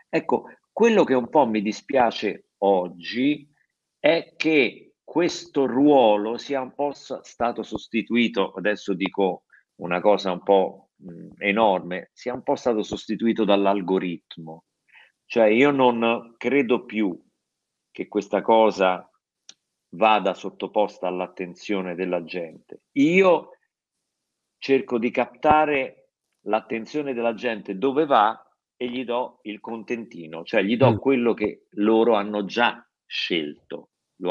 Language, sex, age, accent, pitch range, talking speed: Italian, male, 50-69, native, 95-130 Hz, 115 wpm